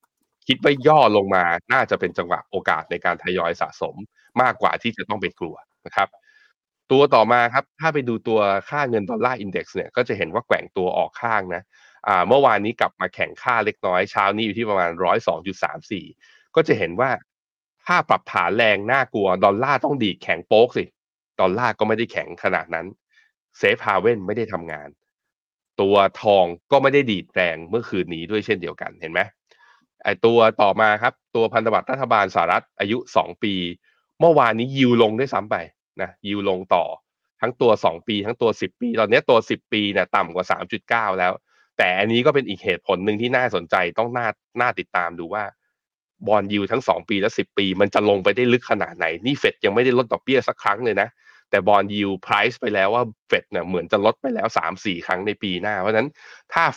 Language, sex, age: Thai, male, 20-39